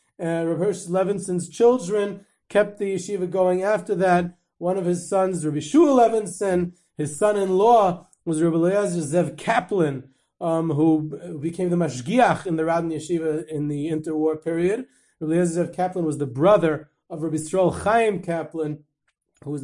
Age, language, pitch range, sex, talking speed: 30-49, English, 155-185 Hz, male, 160 wpm